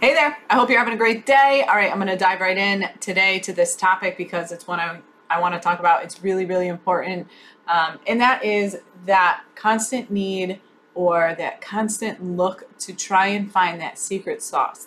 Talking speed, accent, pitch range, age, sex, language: 200 wpm, American, 185-265 Hz, 30-49, female, English